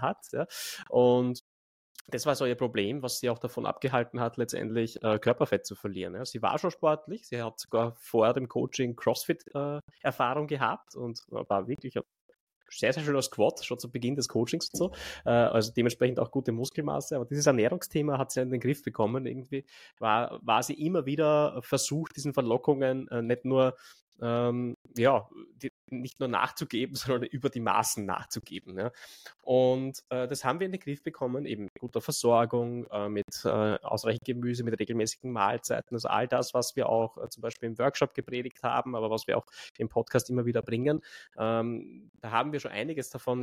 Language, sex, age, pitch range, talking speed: German, male, 20-39, 115-135 Hz, 190 wpm